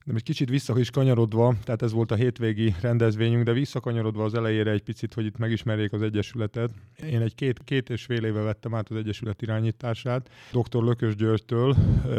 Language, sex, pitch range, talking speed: Hungarian, male, 110-125 Hz, 170 wpm